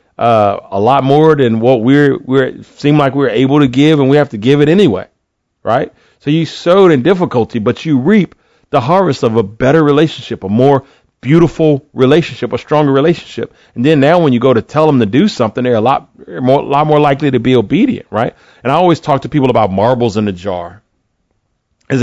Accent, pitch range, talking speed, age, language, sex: American, 110-140 Hz, 215 wpm, 40-59, English, male